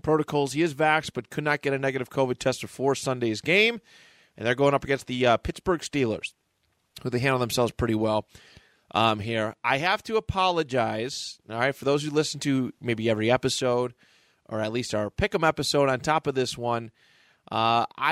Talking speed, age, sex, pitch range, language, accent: 190 wpm, 30-49, male, 115-150 Hz, English, American